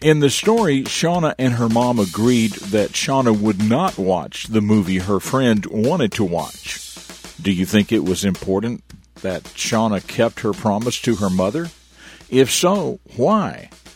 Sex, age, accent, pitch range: male, 50-69, American, 100-135 Hz